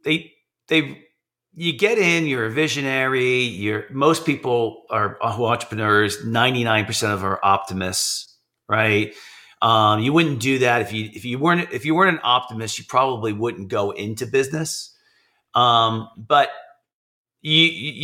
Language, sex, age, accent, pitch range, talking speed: English, male, 40-59, American, 115-155 Hz, 140 wpm